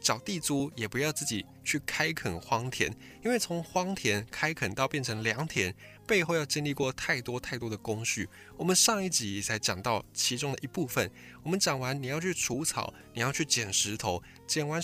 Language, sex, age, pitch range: Chinese, male, 20-39, 110-155 Hz